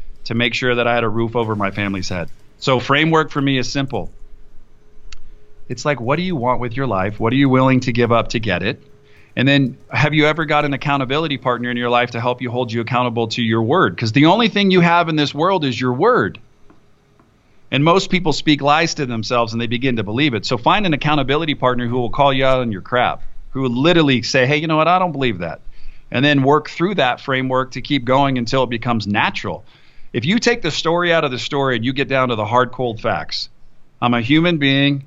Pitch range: 115-145 Hz